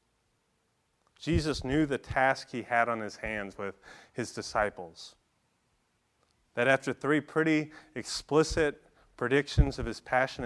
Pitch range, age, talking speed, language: 115-145 Hz, 30-49, 120 wpm, English